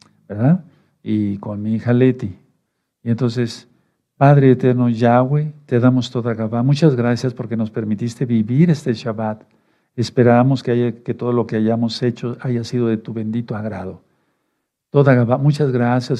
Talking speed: 150 wpm